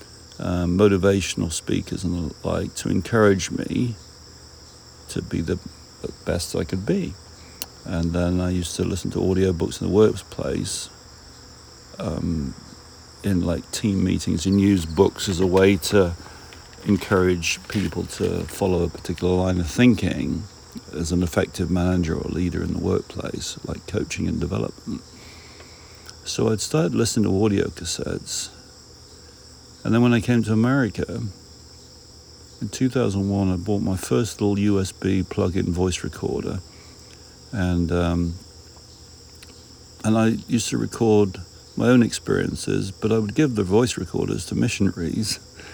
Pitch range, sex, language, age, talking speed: 85-100 Hz, male, English, 50-69, 140 wpm